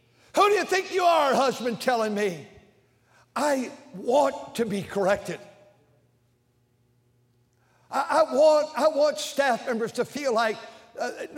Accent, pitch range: American, 175-255 Hz